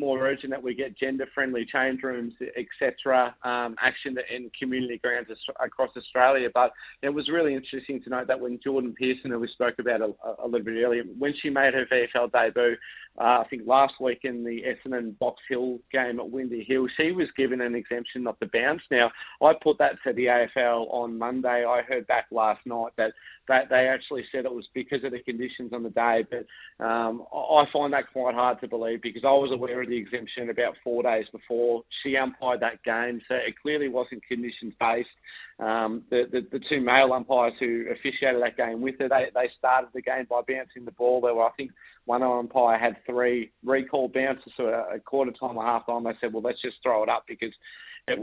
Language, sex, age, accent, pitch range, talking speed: English, male, 30-49, Australian, 120-130 Hz, 215 wpm